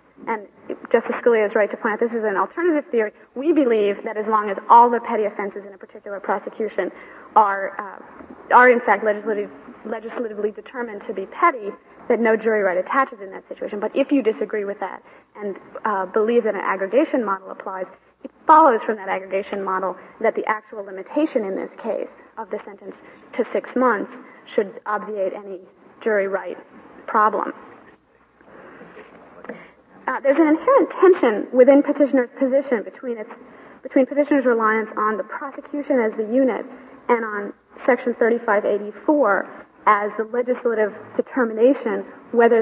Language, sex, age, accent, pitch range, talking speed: English, female, 30-49, American, 210-265 Hz, 160 wpm